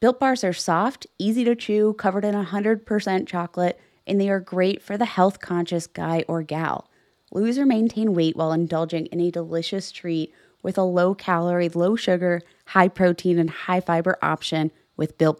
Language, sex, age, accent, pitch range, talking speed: English, female, 20-39, American, 170-210 Hz, 160 wpm